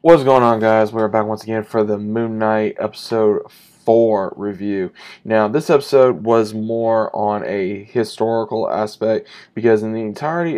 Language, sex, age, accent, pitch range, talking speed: English, male, 20-39, American, 105-115 Hz, 160 wpm